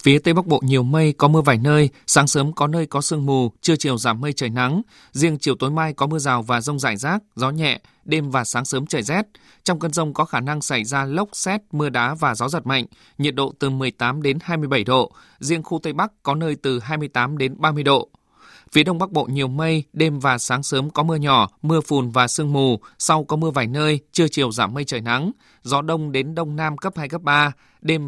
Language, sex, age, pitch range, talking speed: Vietnamese, male, 20-39, 135-160 Hz, 245 wpm